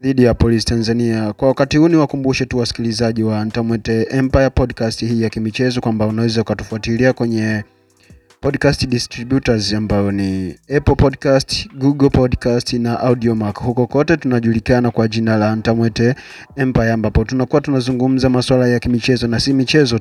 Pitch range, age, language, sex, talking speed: 115-135 Hz, 30-49, Swahili, male, 145 wpm